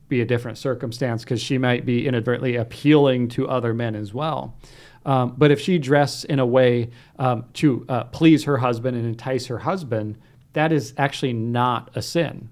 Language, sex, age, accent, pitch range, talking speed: English, male, 40-59, American, 120-145 Hz, 185 wpm